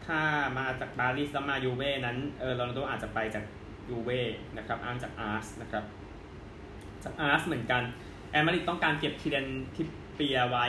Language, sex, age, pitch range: Thai, male, 20-39, 110-145 Hz